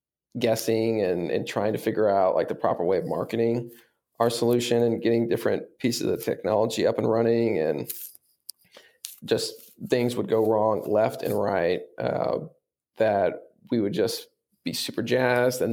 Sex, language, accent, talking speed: male, English, American, 160 wpm